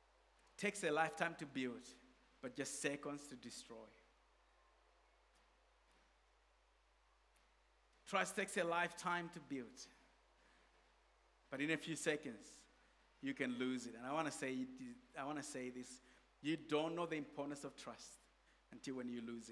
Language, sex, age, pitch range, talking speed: English, male, 50-69, 130-160 Hz, 130 wpm